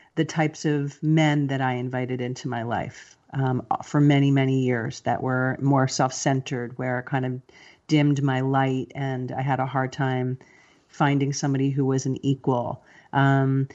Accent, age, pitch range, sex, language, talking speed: American, 40-59, 130-155 Hz, female, English, 170 wpm